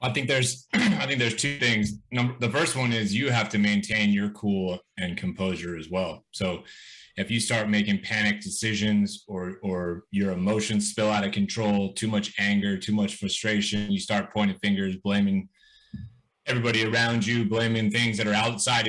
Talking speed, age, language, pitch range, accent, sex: 180 wpm, 30-49, English, 105-120 Hz, American, male